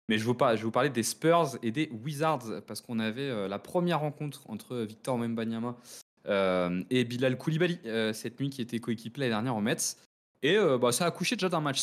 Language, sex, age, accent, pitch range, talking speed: French, male, 20-39, French, 105-130 Hz, 220 wpm